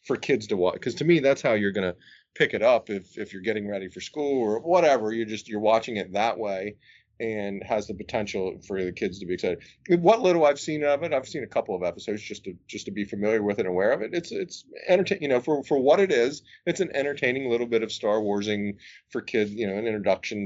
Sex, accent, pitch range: male, American, 105-145 Hz